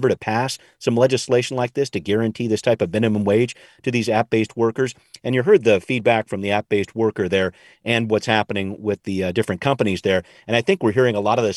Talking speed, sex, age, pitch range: 235 wpm, male, 40-59, 105-125 Hz